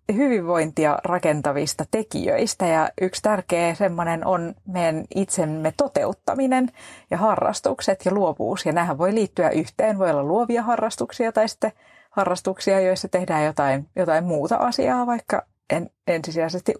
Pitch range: 155-215 Hz